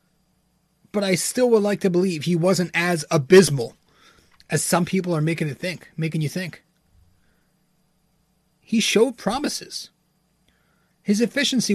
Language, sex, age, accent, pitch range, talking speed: English, male, 30-49, American, 160-205 Hz, 135 wpm